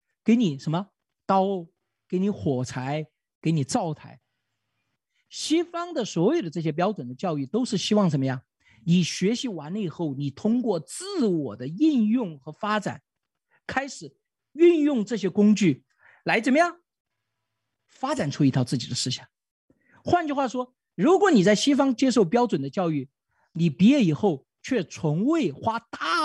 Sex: male